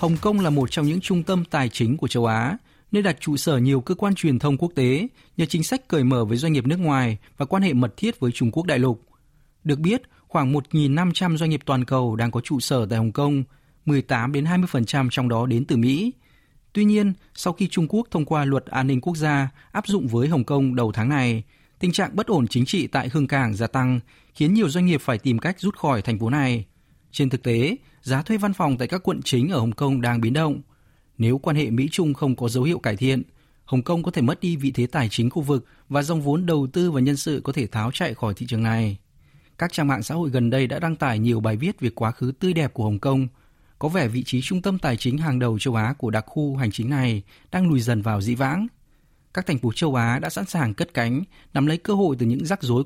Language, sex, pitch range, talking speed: Vietnamese, male, 125-165 Hz, 260 wpm